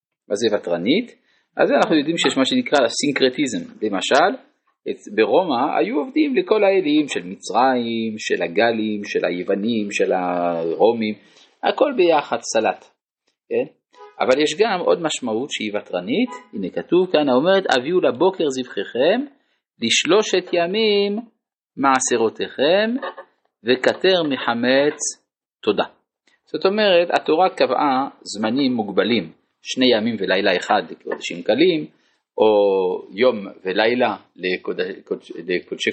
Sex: male